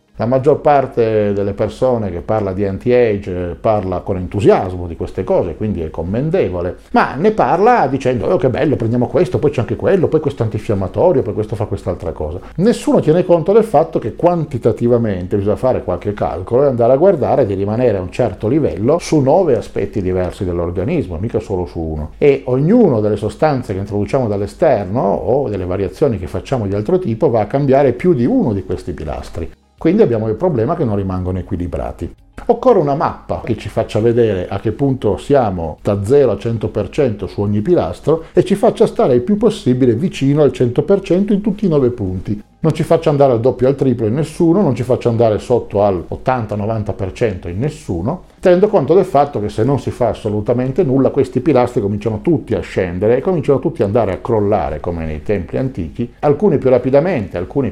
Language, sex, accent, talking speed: Italian, male, native, 195 wpm